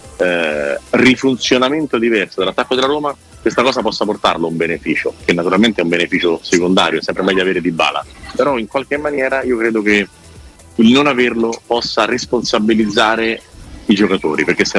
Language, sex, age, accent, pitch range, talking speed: Italian, male, 40-59, native, 95-115 Hz, 160 wpm